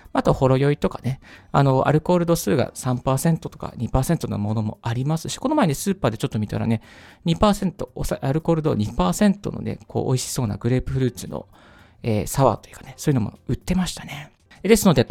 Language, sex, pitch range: Japanese, male, 115-175 Hz